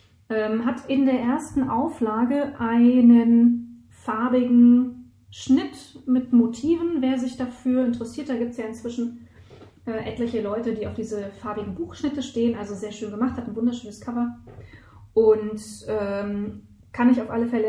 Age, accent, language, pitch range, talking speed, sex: 30-49, German, German, 210-250 Hz, 150 wpm, female